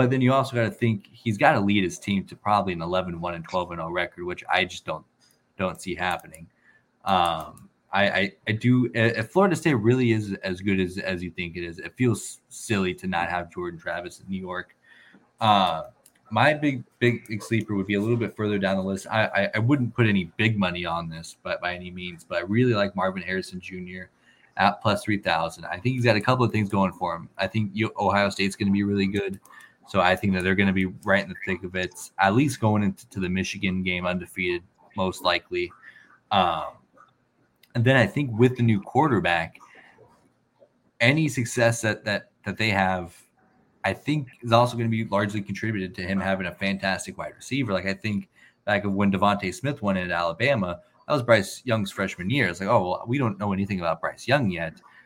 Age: 20-39